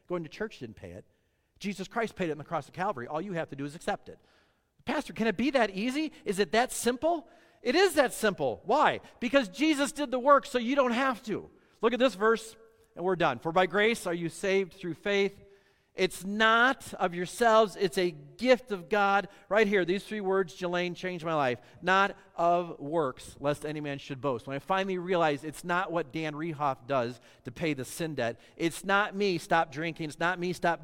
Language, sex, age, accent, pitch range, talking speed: English, male, 40-59, American, 115-185 Hz, 220 wpm